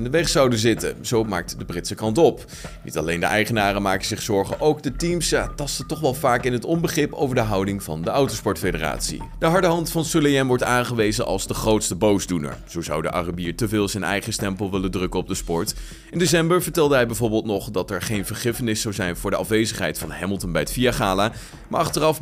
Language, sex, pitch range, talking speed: Dutch, male, 100-140 Hz, 220 wpm